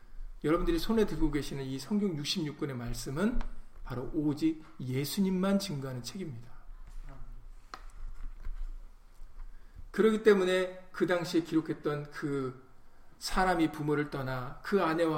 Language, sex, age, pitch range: Korean, male, 50-69, 135-195 Hz